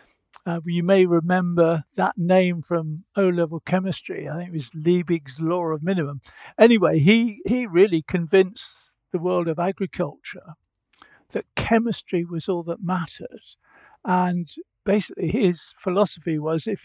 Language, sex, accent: English, male, British